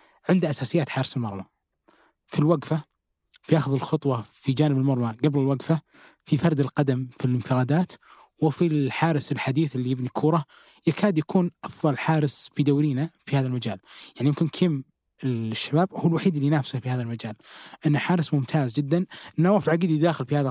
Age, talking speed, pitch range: 20-39, 160 wpm, 130-165 Hz